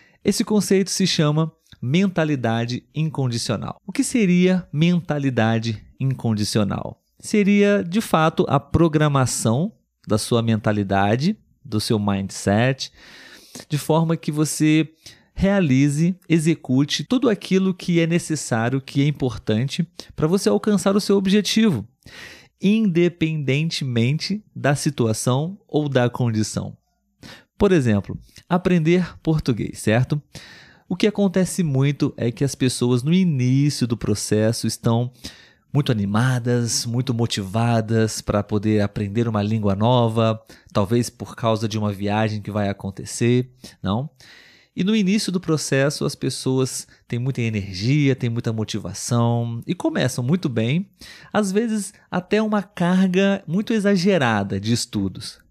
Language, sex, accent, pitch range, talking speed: Portuguese, male, Brazilian, 115-175 Hz, 120 wpm